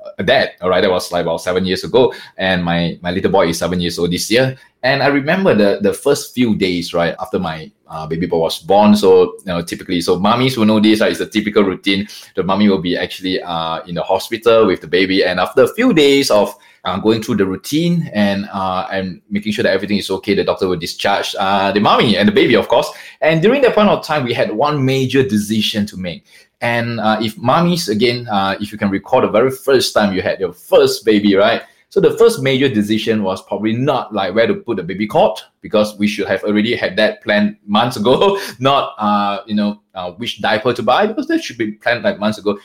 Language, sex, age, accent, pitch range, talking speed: English, male, 20-39, Malaysian, 95-140 Hz, 240 wpm